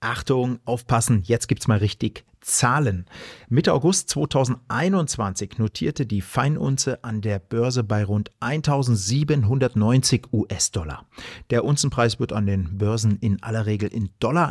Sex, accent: male, German